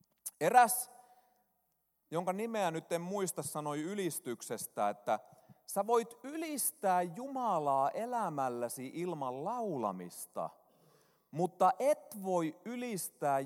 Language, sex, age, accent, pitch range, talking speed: Finnish, male, 30-49, native, 130-220 Hz, 90 wpm